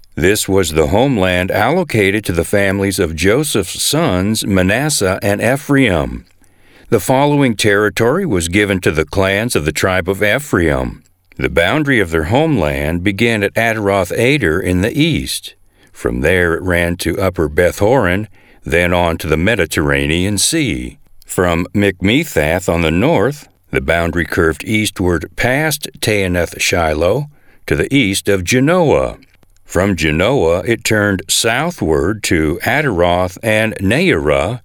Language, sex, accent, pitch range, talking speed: English, male, American, 85-110 Hz, 130 wpm